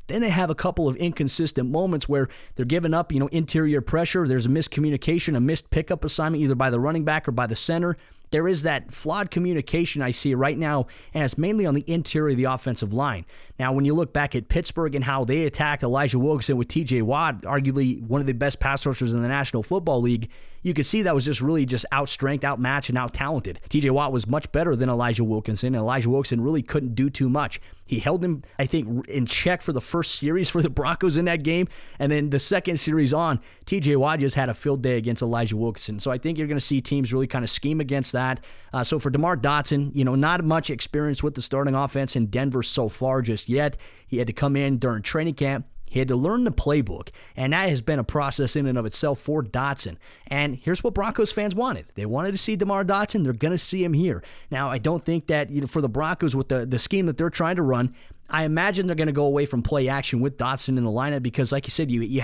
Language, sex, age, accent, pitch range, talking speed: English, male, 30-49, American, 130-160 Hz, 250 wpm